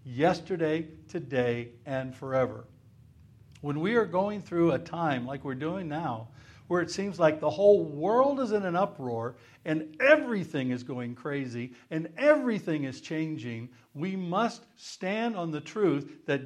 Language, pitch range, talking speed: English, 130-180 Hz, 155 wpm